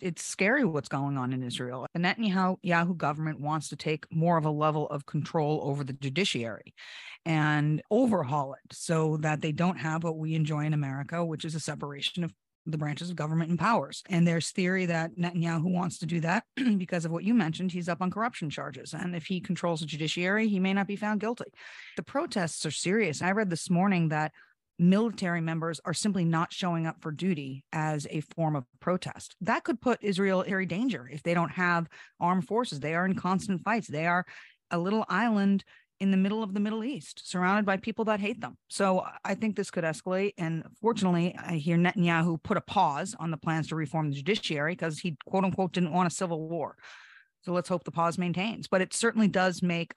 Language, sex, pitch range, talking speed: English, female, 160-190 Hz, 210 wpm